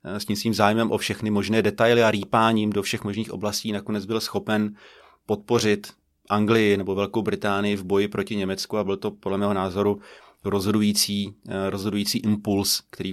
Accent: native